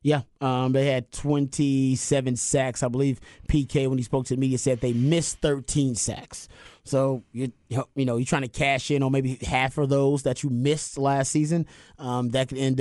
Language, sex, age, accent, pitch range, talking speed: English, male, 30-49, American, 125-140 Hz, 200 wpm